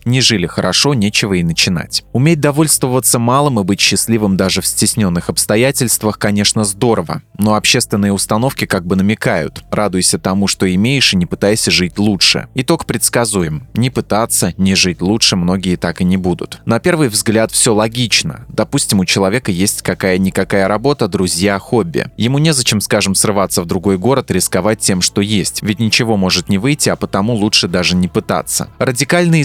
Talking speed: 165 wpm